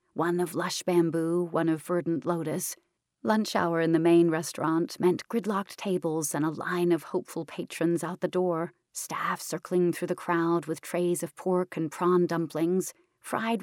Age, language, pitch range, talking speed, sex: 40-59, English, 165-185 Hz, 170 wpm, female